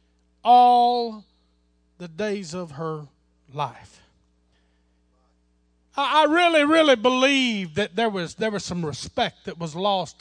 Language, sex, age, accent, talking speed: English, male, 40-59, American, 120 wpm